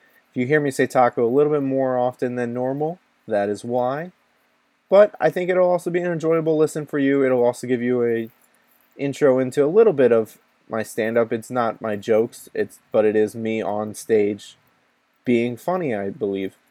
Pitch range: 115-160 Hz